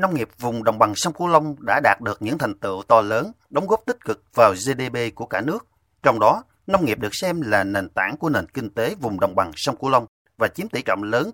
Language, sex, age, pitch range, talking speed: Vietnamese, male, 30-49, 100-150 Hz, 260 wpm